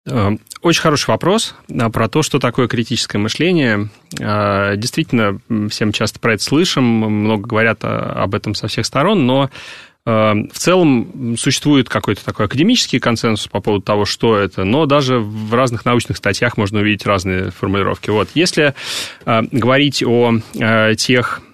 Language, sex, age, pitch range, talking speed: Russian, male, 30-49, 105-130 Hz, 135 wpm